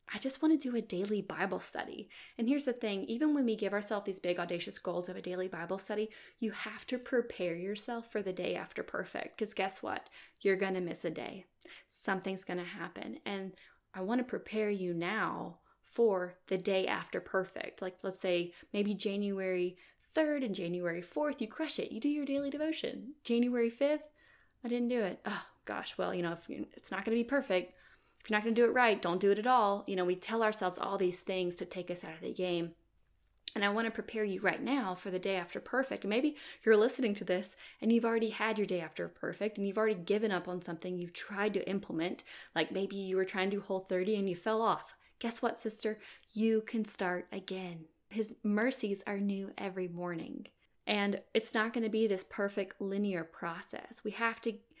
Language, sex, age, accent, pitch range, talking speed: English, female, 20-39, American, 185-230 Hz, 215 wpm